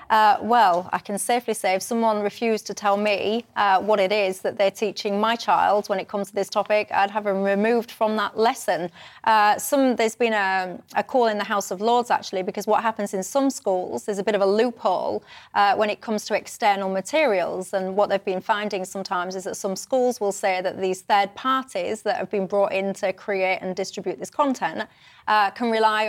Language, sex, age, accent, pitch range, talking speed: English, female, 30-49, British, 195-230 Hz, 220 wpm